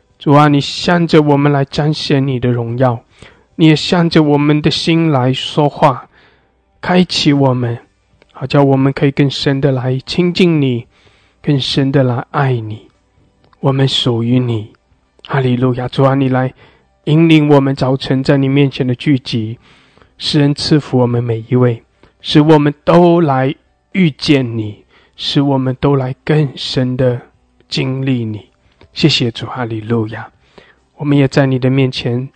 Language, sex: English, male